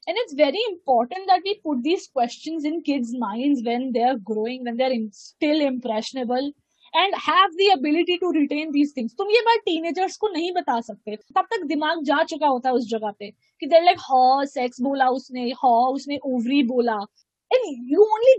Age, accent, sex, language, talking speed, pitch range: 20-39, Indian, female, English, 115 wpm, 255-360 Hz